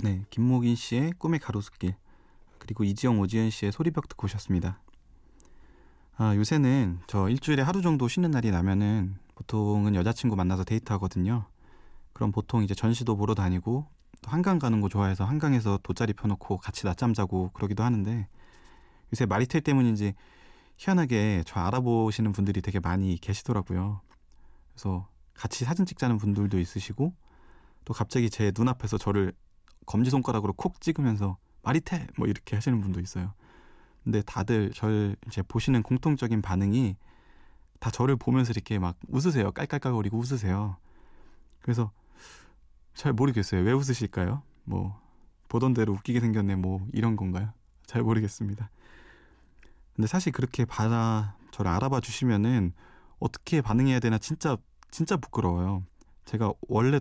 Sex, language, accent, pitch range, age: male, Korean, native, 100-125 Hz, 30-49